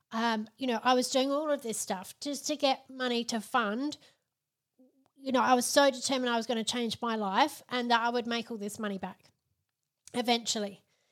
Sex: female